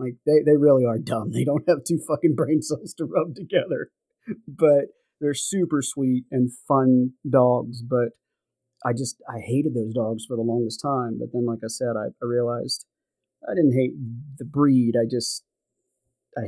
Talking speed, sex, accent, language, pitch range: 180 wpm, male, American, English, 115-145 Hz